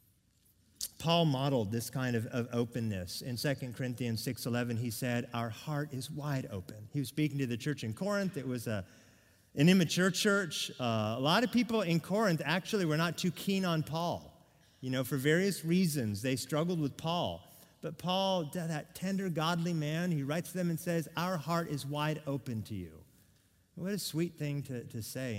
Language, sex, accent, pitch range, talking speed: English, male, American, 115-165 Hz, 190 wpm